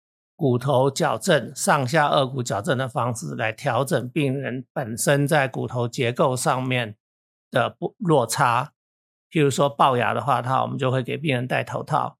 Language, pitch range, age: Chinese, 125-150 Hz, 50-69